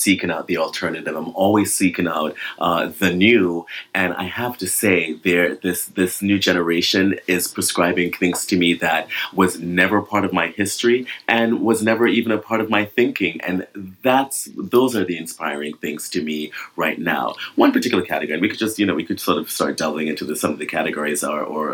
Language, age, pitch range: English, 30-49, 85-105 Hz